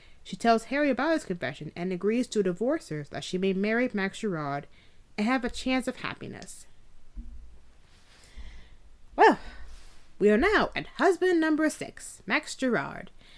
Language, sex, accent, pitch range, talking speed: English, female, American, 160-245 Hz, 150 wpm